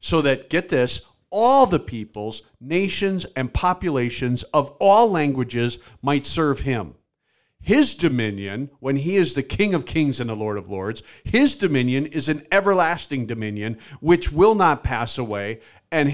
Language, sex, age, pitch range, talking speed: English, male, 50-69, 120-160 Hz, 155 wpm